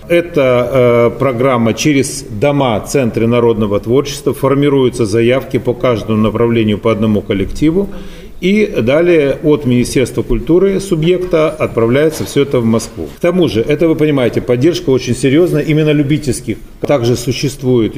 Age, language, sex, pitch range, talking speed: 40-59, Russian, male, 110-145 Hz, 135 wpm